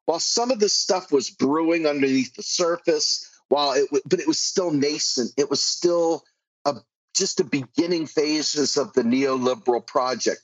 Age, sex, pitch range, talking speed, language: 40-59, male, 130-185 Hz, 180 wpm, English